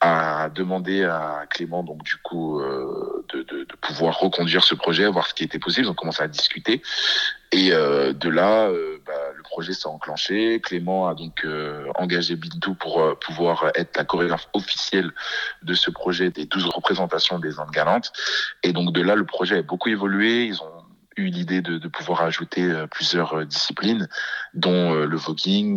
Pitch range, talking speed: 80-100 Hz, 190 wpm